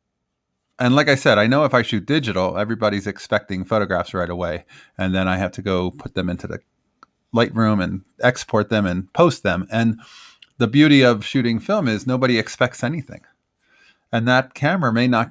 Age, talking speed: 30-49, 185 wpm